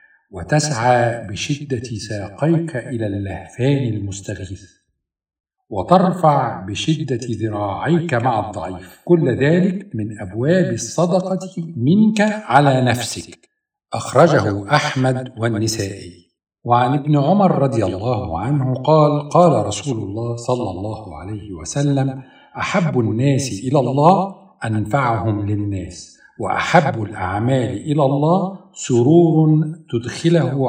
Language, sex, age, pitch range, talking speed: Arabic, male, 50-69, 110-150 Hz, 95 wpm